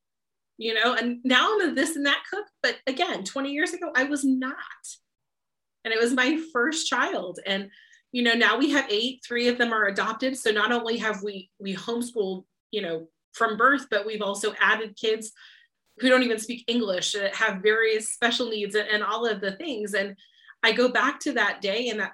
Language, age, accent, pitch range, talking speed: English, 30-49, American, 205-255 Hz, 205 wpm